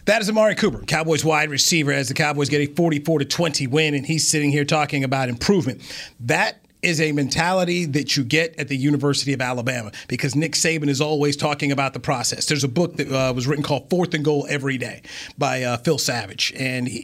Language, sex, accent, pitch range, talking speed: English, male, American, 135-160 Hz, 225 wpm